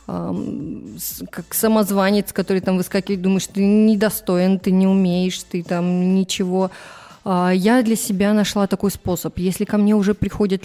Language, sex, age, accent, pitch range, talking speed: Russian, female, 20-39, native, 175-205 Hz, 140 wpm